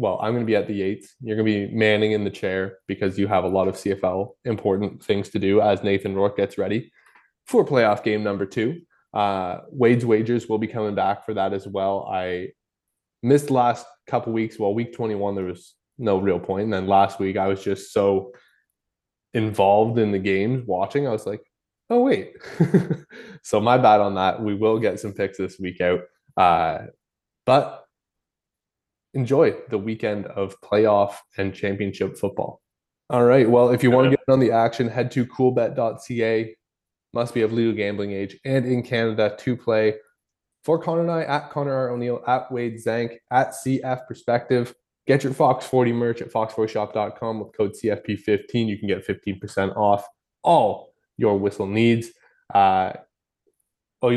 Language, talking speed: English, 180 wpm